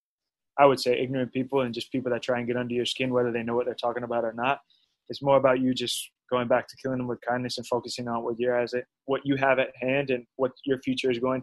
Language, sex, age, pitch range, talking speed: English, male, 20-39, 125-140 Hz, 285 wpm